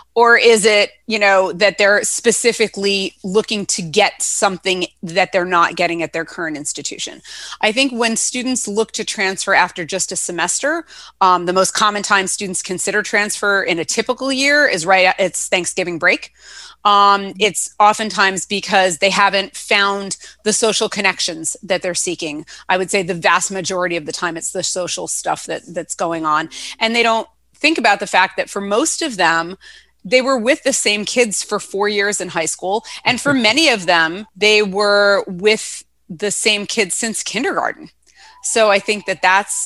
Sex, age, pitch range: female, 30-49, 180-215 Hz